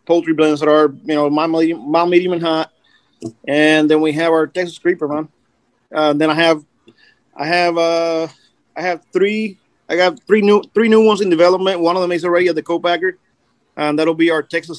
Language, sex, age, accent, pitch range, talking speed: English, male, 30-49, American, 150-170 Hz, 215 wpm